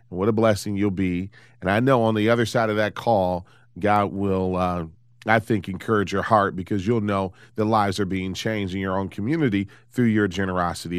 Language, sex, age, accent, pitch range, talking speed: English, male, 30-49, American, 100-125 Hz, 205 wpm